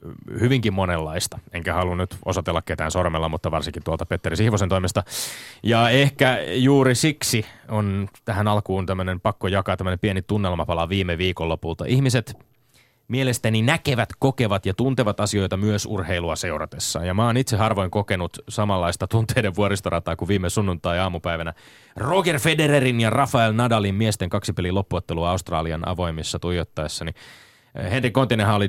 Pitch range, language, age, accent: 90-115 Hz, Finnish, 30-49, native